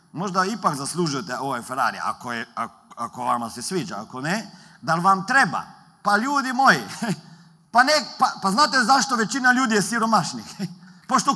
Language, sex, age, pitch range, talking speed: Croatian, male, 50-69, 165-235 Hz, 155 wpm